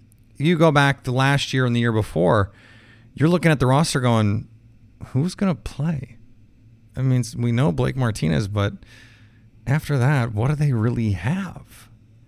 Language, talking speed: English, 165 wpm